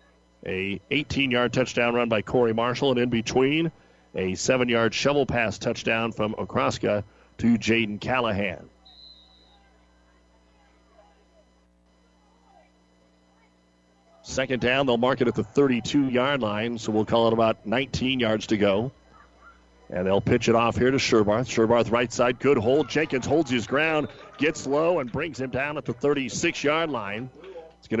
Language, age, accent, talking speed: English, 40-59, American, 145 wpm